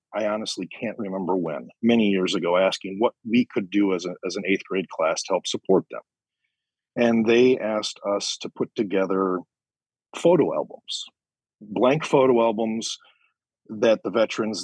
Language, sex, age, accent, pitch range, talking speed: English, male, 40-59, American, 95-125 Hz, 155 wpm